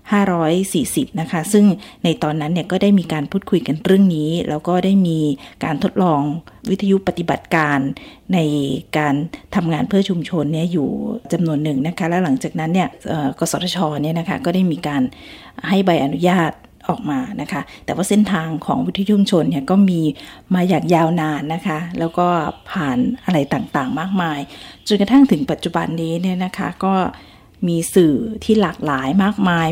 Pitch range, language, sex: 155-195 Hz, Thai, female